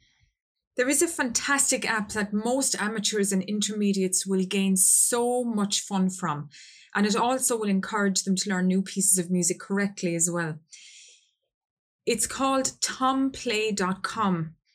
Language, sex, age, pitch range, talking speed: English, female, 20-39, 190-230 Hz, 140 wpm